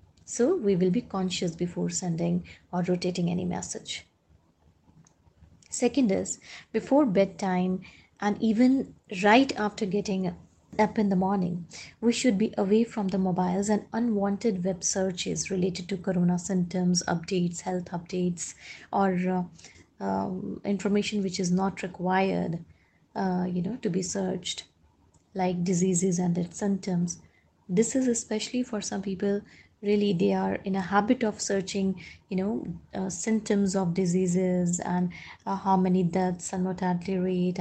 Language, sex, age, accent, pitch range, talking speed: English, female, 20-39, Indian, 180-200 Hz, 140 wpm